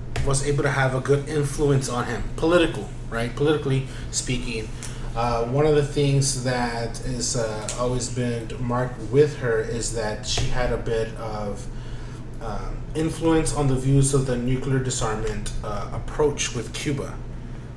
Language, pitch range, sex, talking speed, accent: English, 115-135 Hz, male, 155 wpm, American